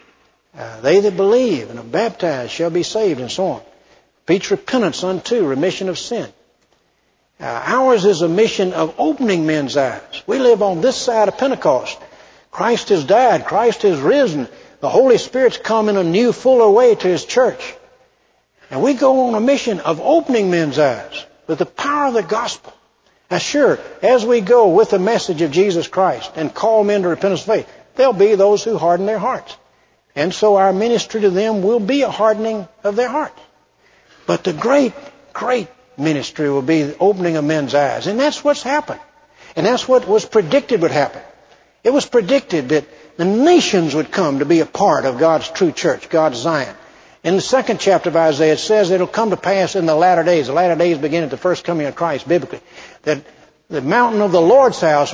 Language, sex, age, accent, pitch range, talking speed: English, male, 60-79, American, 170-255 Hz, 200 wpm